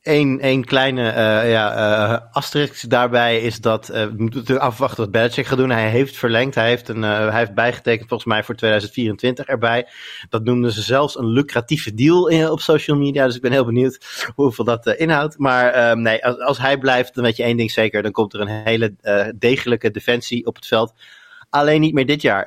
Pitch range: 110-125 Hz